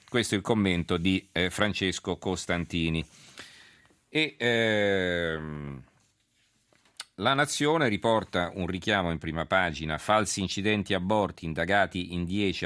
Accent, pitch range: native, 85-100 Hz